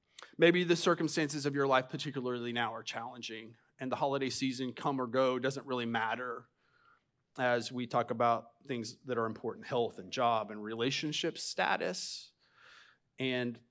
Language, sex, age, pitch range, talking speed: English, male, 30-49, 125-175 Hz, 155 wpm